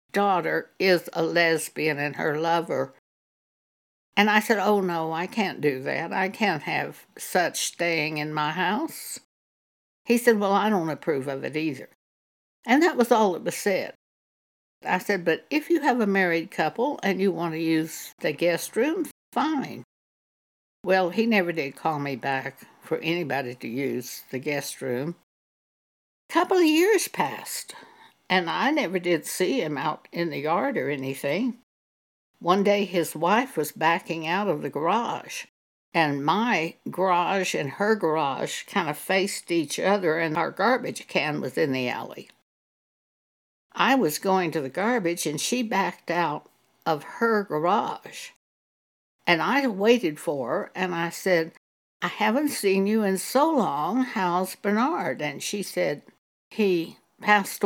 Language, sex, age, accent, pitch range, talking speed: English, female, 60-79, American, 155-210 Hz, 160 wpm